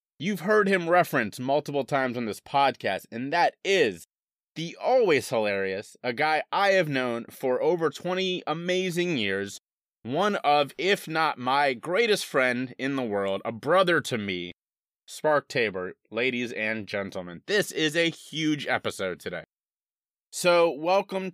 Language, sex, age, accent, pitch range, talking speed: English, male, 30-49, American, 115-160 Hz, 145 wpm